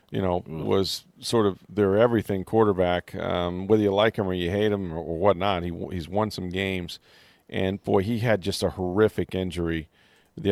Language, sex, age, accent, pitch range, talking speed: English, male, 40-59, American, 90-100 Hz, 190 wpm